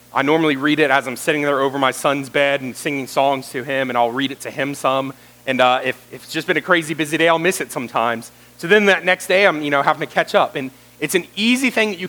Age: 30-49